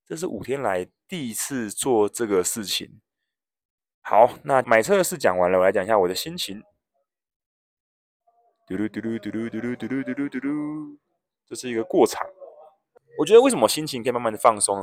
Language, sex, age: Chinese, male, 20-39